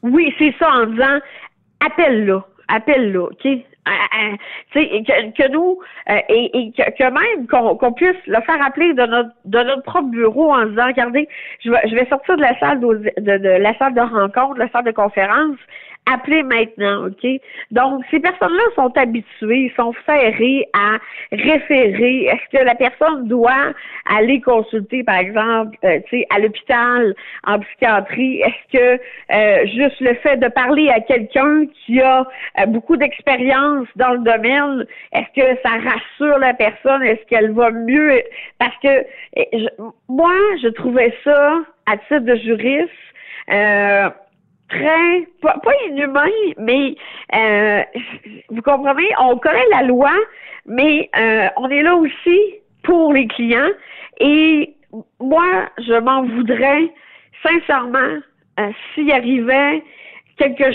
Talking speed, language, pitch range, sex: 150 wpm, French, 230-295 Hz, female